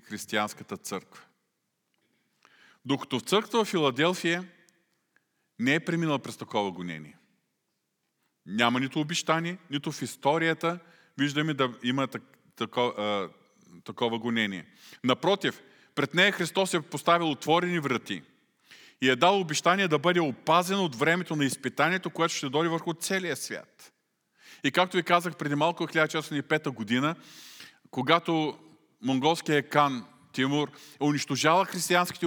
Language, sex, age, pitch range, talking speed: Bulgarian, male, 40-59, 125-170 Hz, 115 wpm